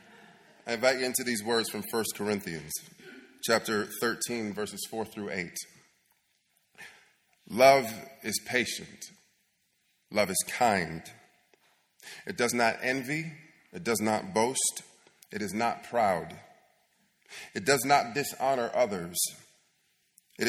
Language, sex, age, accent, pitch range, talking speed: English, male, 30-49, American, 105-150 Hz, 115 wpm